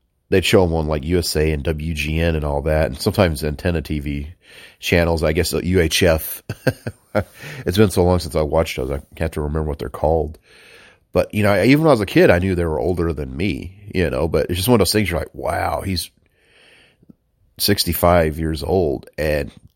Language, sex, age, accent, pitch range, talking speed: English, male, 40-59, American, 75-95 Hz, 200 wpm